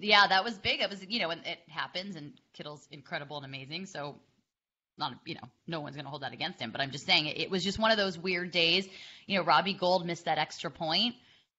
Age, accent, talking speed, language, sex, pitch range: 20-39, American, 240 wpm, English, female, 155-185 Hz